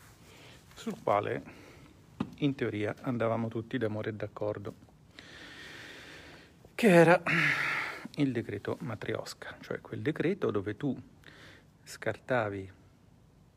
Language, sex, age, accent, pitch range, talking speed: Italian, male, 50-69, native, 105-135 Hz, 90 wpm